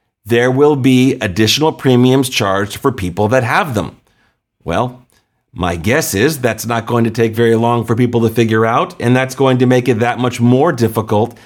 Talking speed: 195 wpm